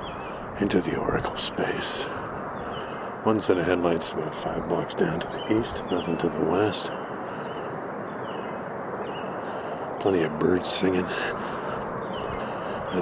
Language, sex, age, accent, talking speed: English, male, 60-79, American, 110 wpm